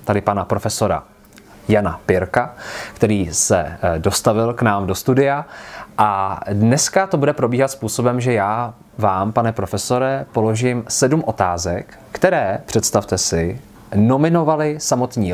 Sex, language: male, Czech